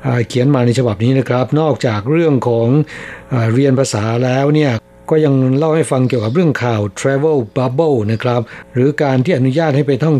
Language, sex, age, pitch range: Thai, male, 60-79, 125-155 Hz